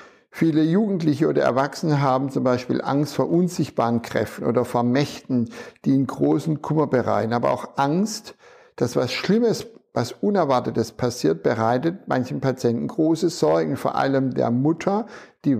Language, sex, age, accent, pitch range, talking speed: German, male, 60-79, German, 125-160 Hz, 145 wpm